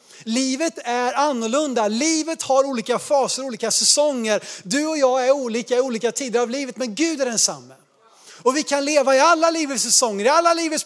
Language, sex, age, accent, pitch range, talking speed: Swedish, male, 30-49, native, 195-280 Hz, 190 wpm